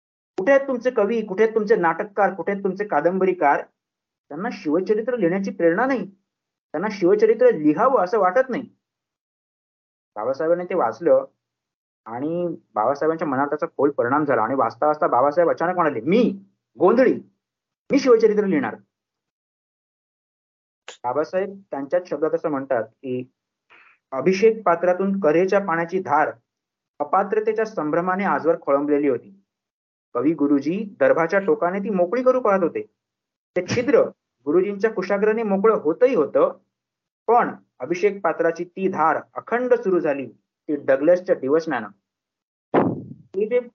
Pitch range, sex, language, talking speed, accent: 145-215 Hz, male, Marathi, 115 wpm, native